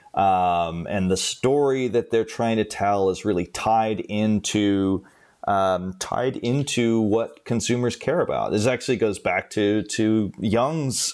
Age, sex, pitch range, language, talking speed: 30-49, male, 95-120 Hz, English, 145 wpm